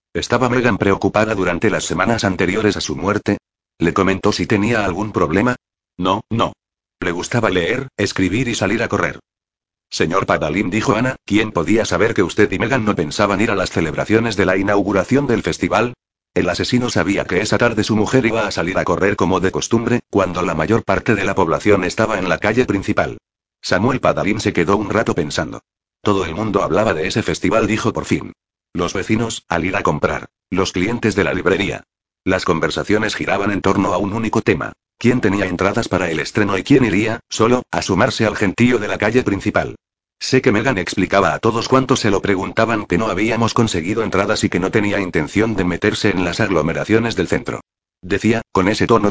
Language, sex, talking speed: Spanish, male, 200 wpm